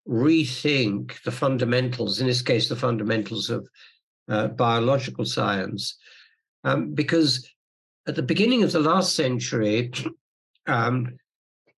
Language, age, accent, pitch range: English, 60-79, British, 115-140 Hz